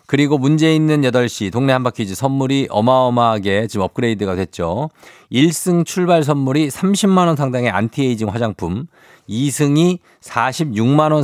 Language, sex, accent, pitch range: Korean, male, native, 105-145 Hz